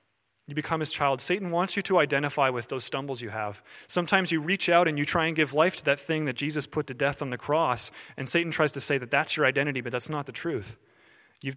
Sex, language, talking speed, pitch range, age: male, English, 260 wpm, 130-165 Hz, 30-49